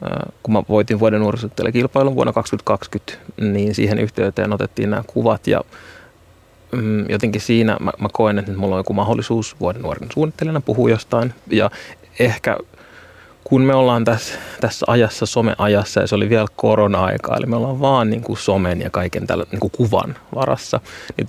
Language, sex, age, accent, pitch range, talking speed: Finnish, male, 30-49, native, 105-115 Hz, 160 wpm